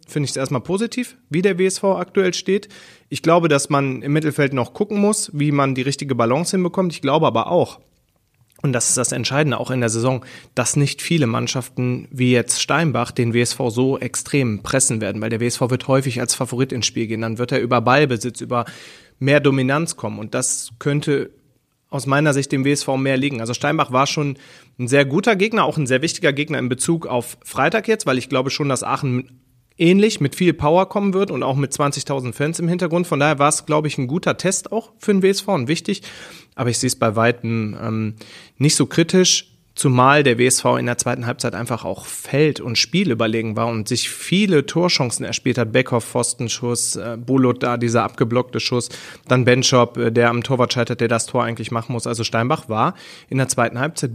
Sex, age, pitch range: male, 30-49, 120-155 Hz